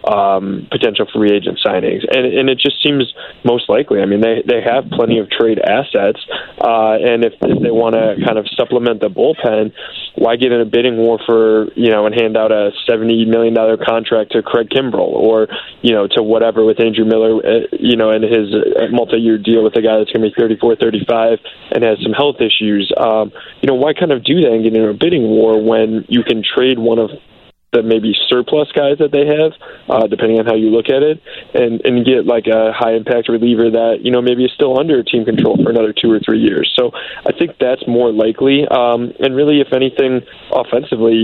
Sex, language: male, English